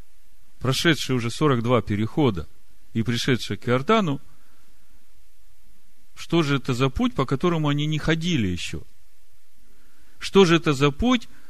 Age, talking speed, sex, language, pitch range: 40-59, 125 wpm, male, Russian, 105-145 Hz